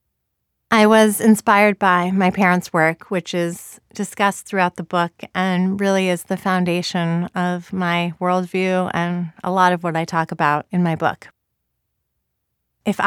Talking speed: 150 wpm